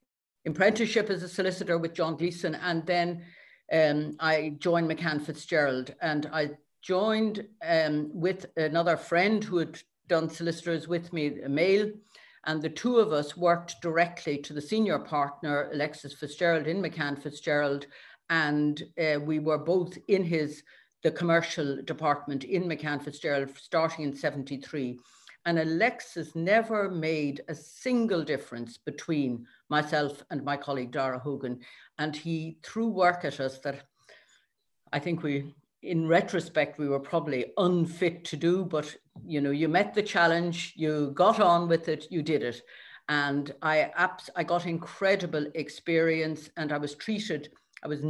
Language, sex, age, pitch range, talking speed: English, female, 60-79, 145-175 Hz, 150 wpm